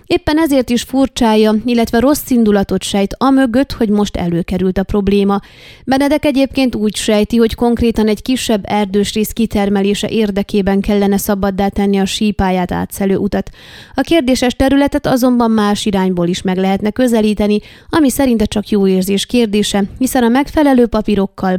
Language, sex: Hungarian, female